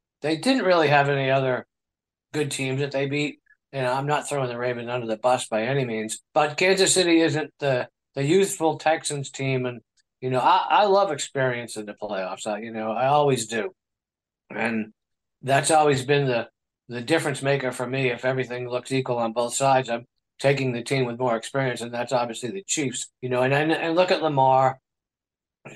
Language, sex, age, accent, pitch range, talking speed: English, male, 50-69, American, 125-150 Hz, 205 wpm